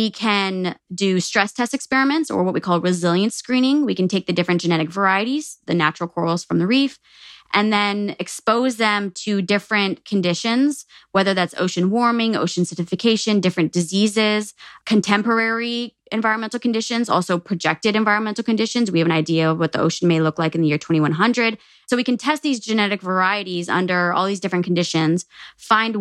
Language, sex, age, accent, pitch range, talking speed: English, female, 20-39, American, 175-220 Hz, 175 wpm